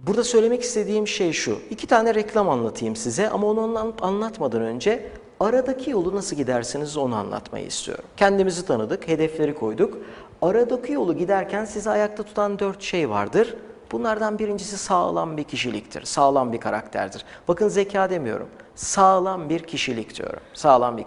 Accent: native